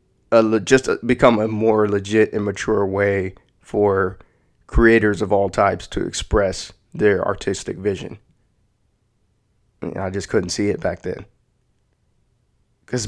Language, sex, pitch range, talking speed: English, male, 100-110 Hz, 120 wpm